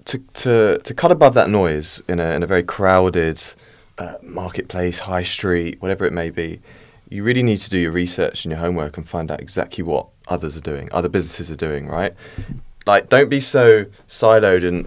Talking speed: 200 wpm